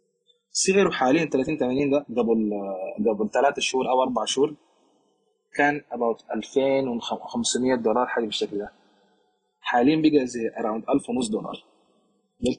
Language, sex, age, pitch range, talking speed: Arabic, male, 20-39, 125-160 Hz, 125 wpm